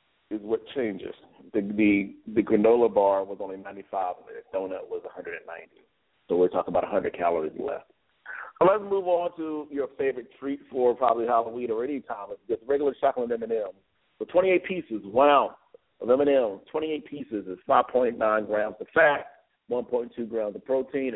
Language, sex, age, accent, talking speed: English, male, 40-59, American, 165 wpm